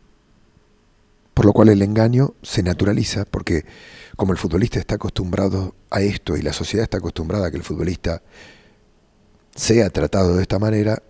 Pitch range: 85-110 Hz